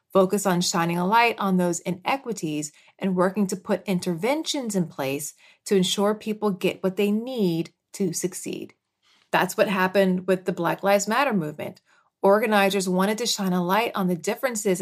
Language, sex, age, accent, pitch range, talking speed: English, female, 30-49, American, 175-210 Hz, 170 wpm